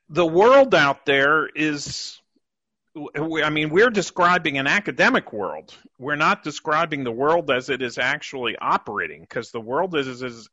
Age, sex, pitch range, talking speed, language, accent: 40-59, male, 130-175 Hz, 160 wpm, English, American